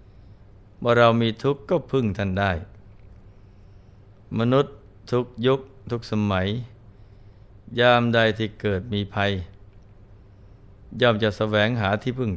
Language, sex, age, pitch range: Thai, male, 20-39, 100-115 Hz